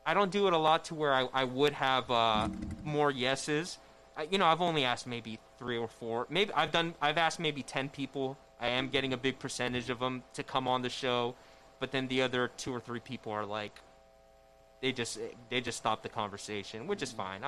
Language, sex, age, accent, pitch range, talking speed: English, male, 20-39, American, 110-135 Hz, 225 wpm